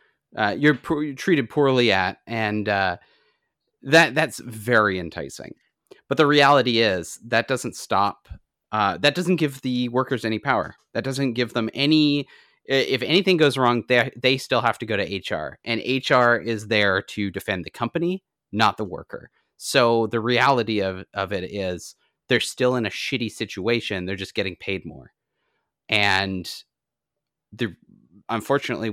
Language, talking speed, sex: English, 160 wpm, male